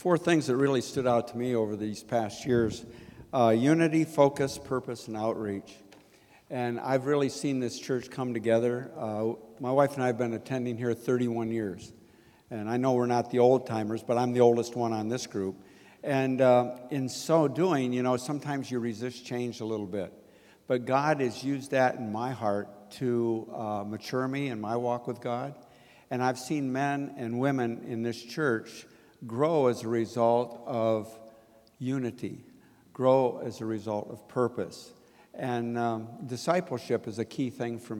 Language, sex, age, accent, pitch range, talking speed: English, male, 60-79, American, 115-130 Hz, 175 wpm